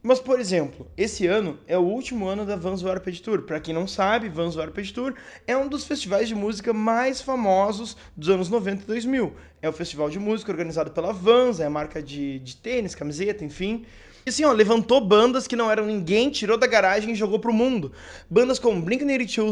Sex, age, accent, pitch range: male, 20-39, Brazilian, 180-235 Hz